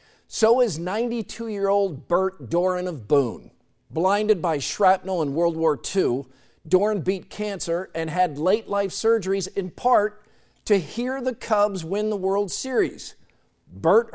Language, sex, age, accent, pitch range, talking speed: English, male, 50-69, American, 160-205 Hz, 135 wpm